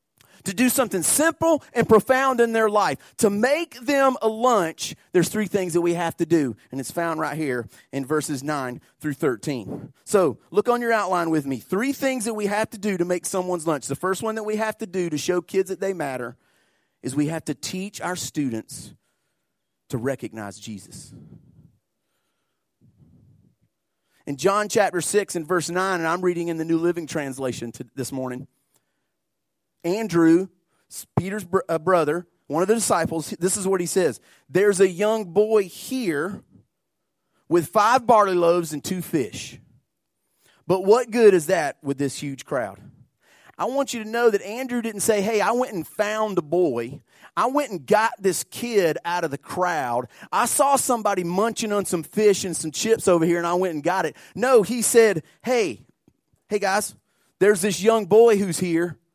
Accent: American